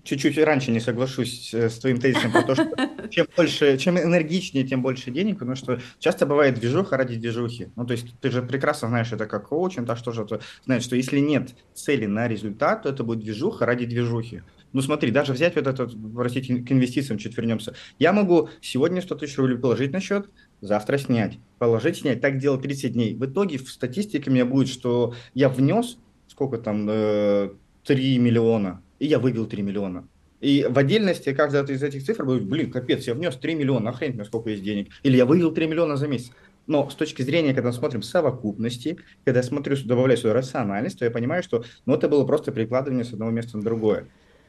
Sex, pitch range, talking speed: male, 115-145 Hz, 205 wpm